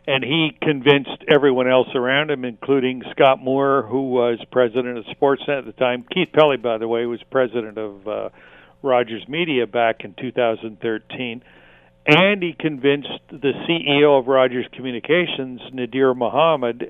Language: English